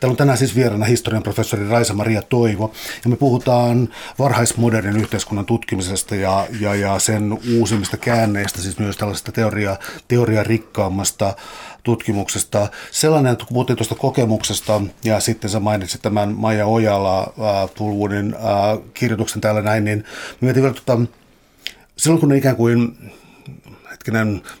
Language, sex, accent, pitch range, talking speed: Finnish, male, native, 105-120 Hz, 120 wpm